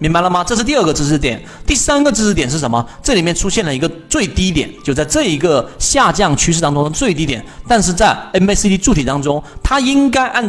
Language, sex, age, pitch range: Chinese, male, 40-59, 130-200 Hz